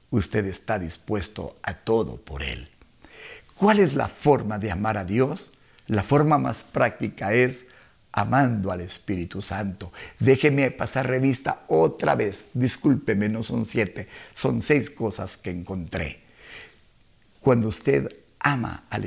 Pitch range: 100-130 Hz